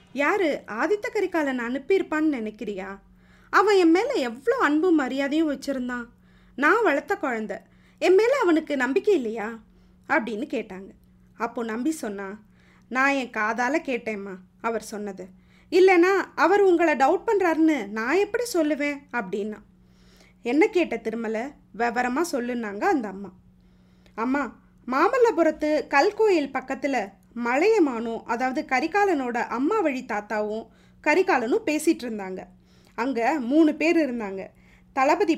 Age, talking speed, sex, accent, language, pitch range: 20-39, 110 wpm, female, native, Tamil, 225-330 Hz